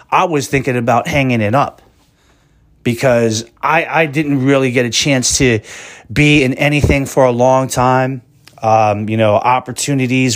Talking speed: 155 wpm